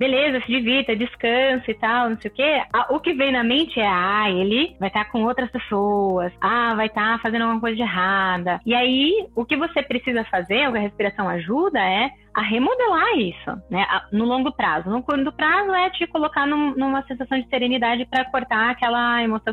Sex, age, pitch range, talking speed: female, 20-39, 220-295 Hz, 205 wpm